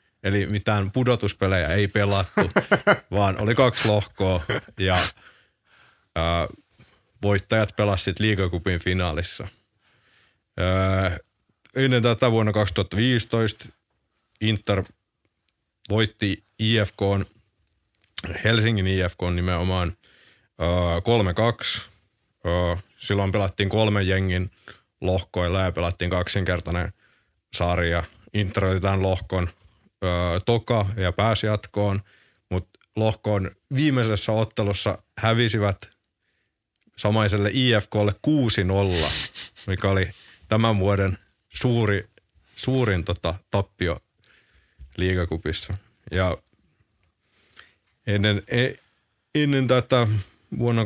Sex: male